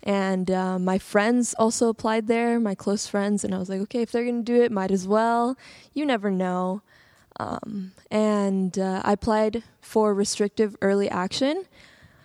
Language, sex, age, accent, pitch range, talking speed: English, female, 10-29, American, 195-225 Hz, 175 wpm